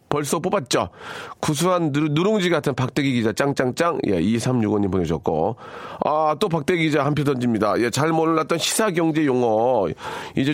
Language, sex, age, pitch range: Korean, male, 40-59, 110-155 Hz